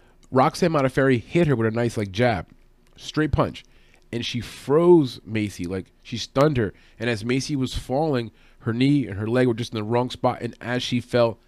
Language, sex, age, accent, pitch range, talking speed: English, male, 30-49, American, 110-135 Hz, 205 wpm